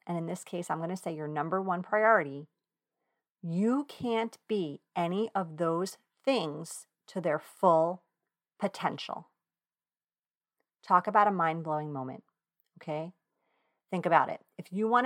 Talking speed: 140 wpm